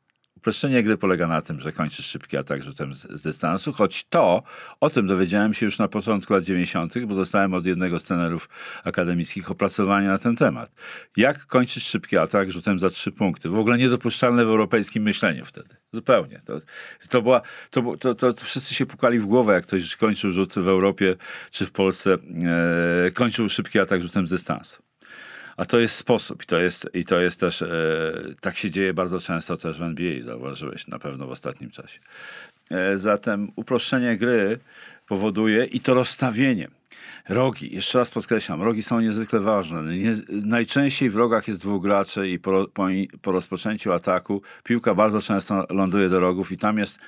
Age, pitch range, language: 40-59, 90-110 Hz, Polish